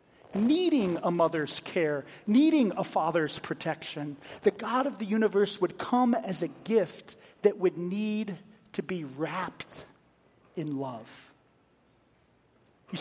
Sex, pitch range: male, 160-205 Hz